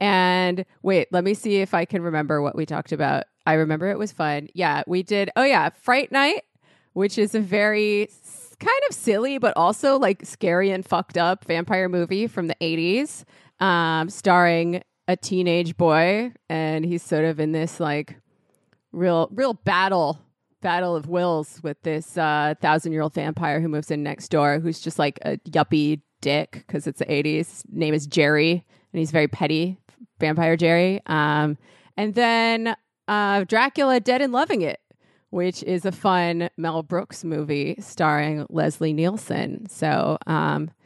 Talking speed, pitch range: 165 wpm, 160-200 Hz